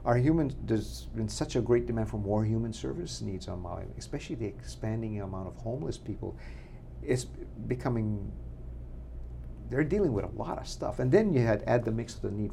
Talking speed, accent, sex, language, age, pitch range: 195 wpm, American, male, English, 50-69, 100-125 Hz